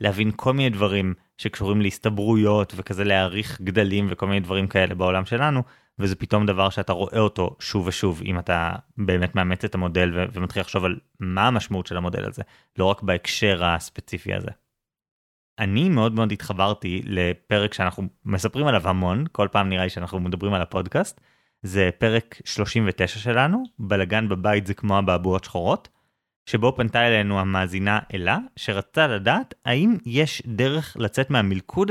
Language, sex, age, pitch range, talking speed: Hebrew, male, 20-39, 95-125 Hz, 150 wpm